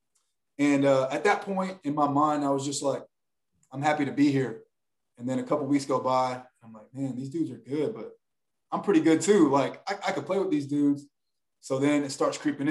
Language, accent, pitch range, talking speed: English, American, 130-150 Hz, 235 wpm